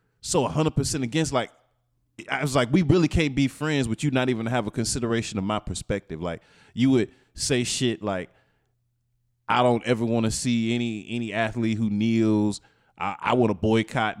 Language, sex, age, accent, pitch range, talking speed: English, male, 20-39, American, 110-130 Hz, 185 wpm